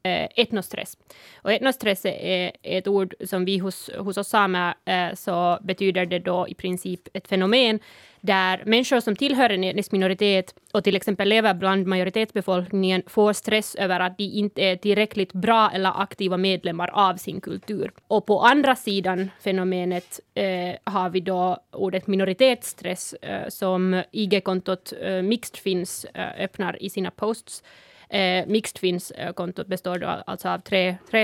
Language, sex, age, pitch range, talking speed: Swedish, female, 20-39, 180-205 Hz, 155 wpm